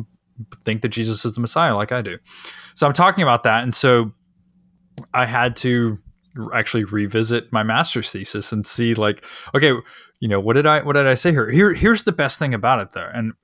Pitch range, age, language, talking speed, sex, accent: 100-125 Hz, 20-39, English, 210 wpm, male, American